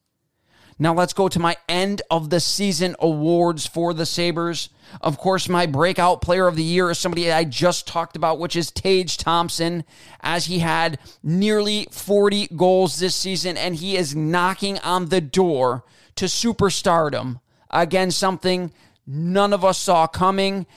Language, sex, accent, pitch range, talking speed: English, male, American, 150-180 Hz, 155 wpm